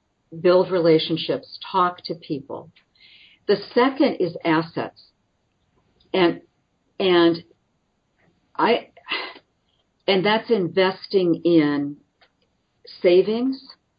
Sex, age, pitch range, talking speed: female, 50-69, 160-190 Hz, 75 wpm